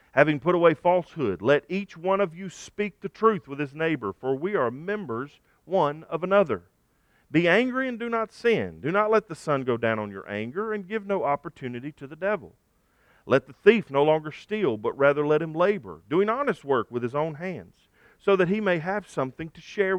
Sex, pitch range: male, 130-185 Hz